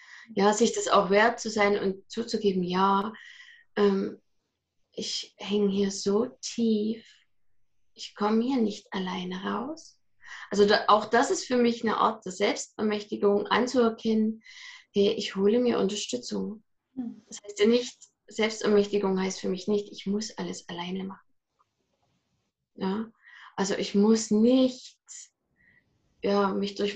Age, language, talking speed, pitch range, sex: 20-39, German, 135 wpm, 200-235 Hz, female